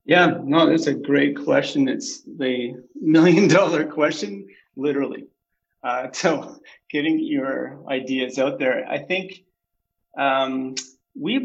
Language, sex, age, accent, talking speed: English, male, 30-49, American, 120 wpm